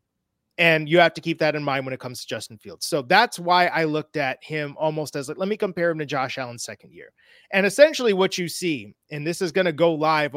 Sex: male